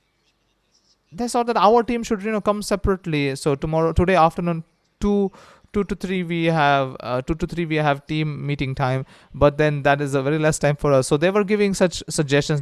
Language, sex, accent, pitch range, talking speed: English, male, Indian, 130-180 Hz, 215 wpm